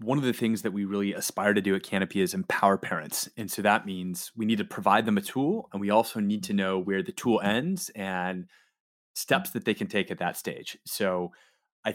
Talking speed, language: 235 wpm, English